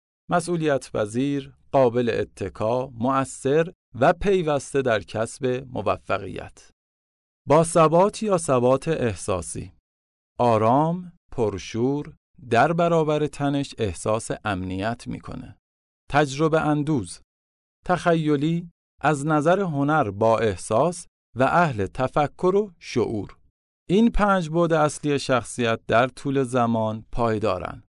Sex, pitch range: male, 110-160 Hz